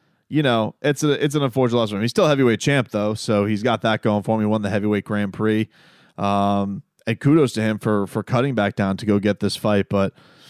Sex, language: male, English